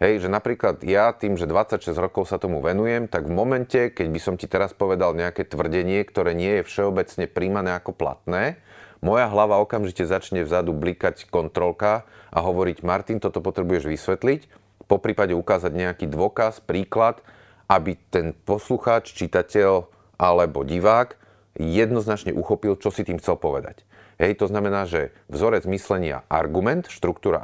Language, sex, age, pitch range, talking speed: Slovak, male, 30-49, 90-105 Hz, 150 wpm